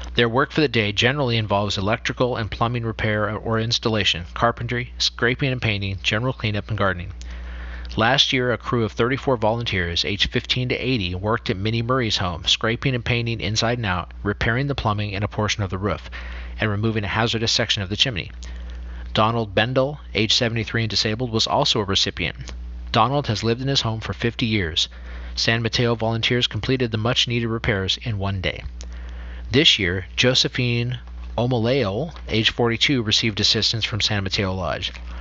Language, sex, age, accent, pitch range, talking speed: English, male, 40-59, American, 95-120 Hz, 170 wpm